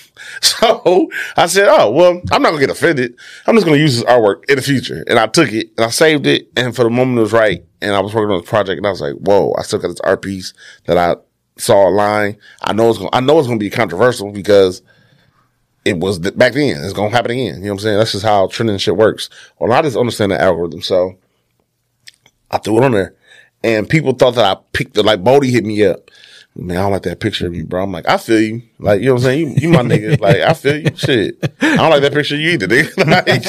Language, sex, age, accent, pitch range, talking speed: English, male, 30-49, American, 110-155 Hz, 270 wpm